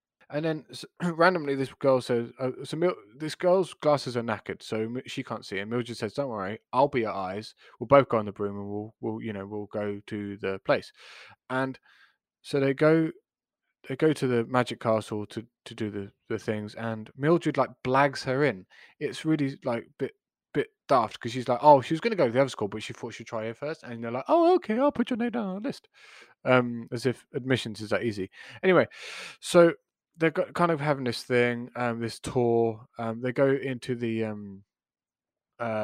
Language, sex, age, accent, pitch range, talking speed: English, male, 20-39, British, 110-135 Hz, 220 wpm